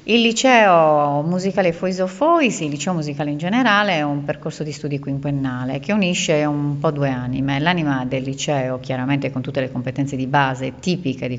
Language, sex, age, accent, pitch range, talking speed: Italian, female, 40-59, native, 130-155 Hz, 180 wpm